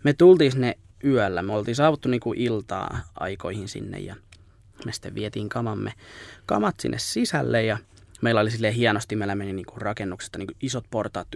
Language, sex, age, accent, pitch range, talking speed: Finnish, male, 20-39, native, 100-125 Hz, 165 wpm